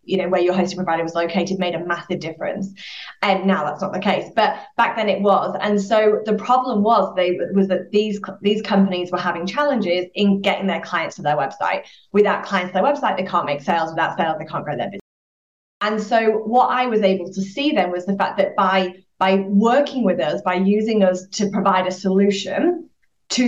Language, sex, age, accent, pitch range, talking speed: English, female, 20-39, British, 185-220 Hz, 220 wpm